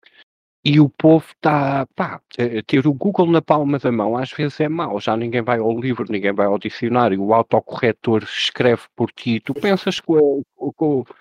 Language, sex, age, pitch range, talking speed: Portuguese, male, 50-69, 110-150 Hz, 185 wpm